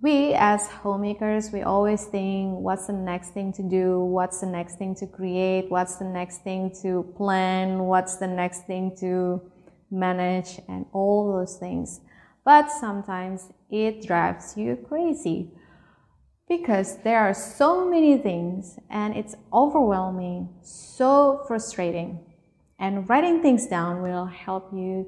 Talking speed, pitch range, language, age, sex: 140 wpm, 180-210 Hz, English, 20-39, female